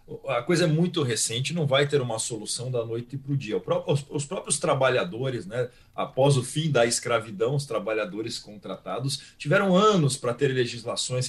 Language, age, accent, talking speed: Portuguese, 40-59, Brazilian, 170 wpm